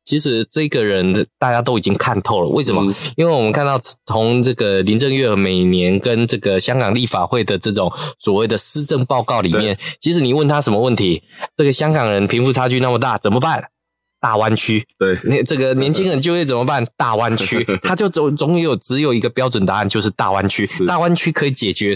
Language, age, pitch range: Chinese, 20-39, 110-155 Hz